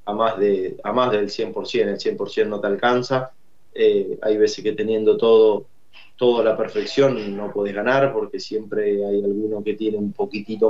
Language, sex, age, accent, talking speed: Spanish, male, 20-39, Argentinian, 175 wpm